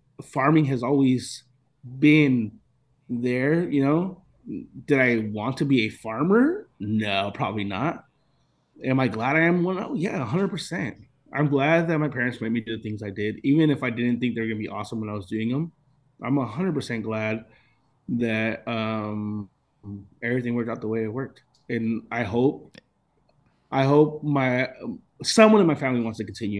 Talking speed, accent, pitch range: 180 wpm, American, 110-140 Hz